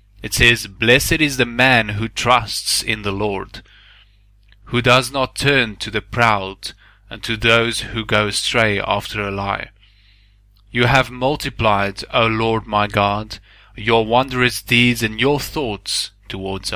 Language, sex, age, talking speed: English, male, 30-49, 145 wpm